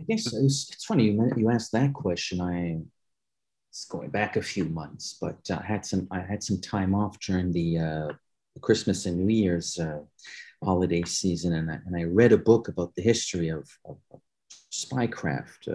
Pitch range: 90-120 Hz